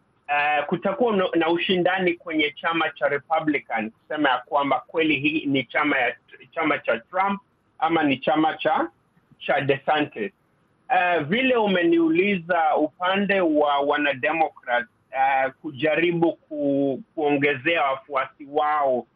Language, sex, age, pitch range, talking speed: Swahili, male, 50-69, 135-180 Hz, 120 wpm